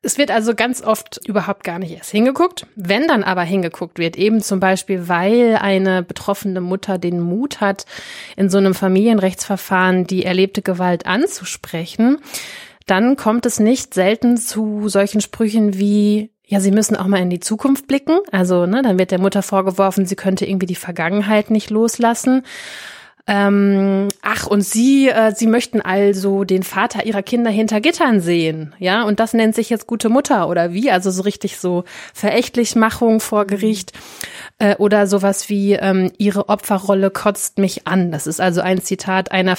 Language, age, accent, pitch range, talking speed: German, 30-49, German, 185-220 Hz, 170 wpm